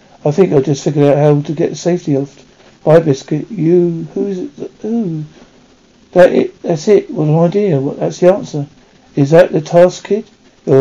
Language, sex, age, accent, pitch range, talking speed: English, male, 50-69, British, 145-175 Hz, 200 wpm